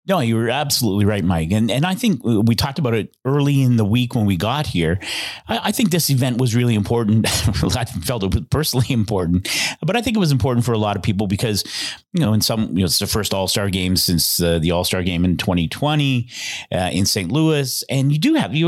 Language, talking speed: English, 245 wpm